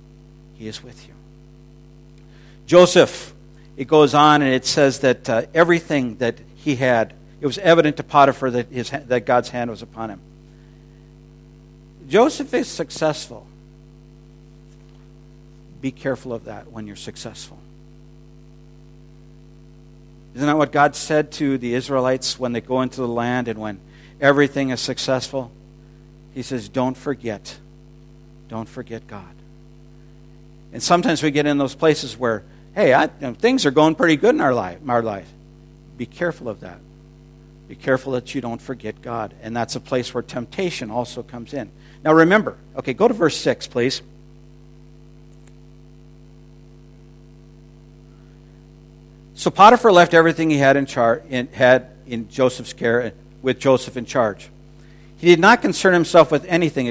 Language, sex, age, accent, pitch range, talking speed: English, male, 50-69, American, 125-150 Hz, 150 wpm